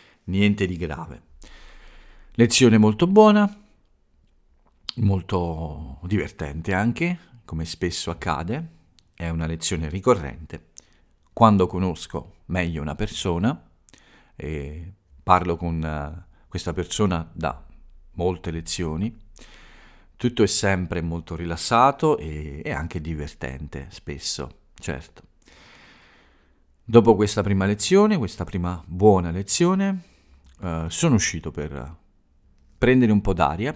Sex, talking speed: male, 100 wpm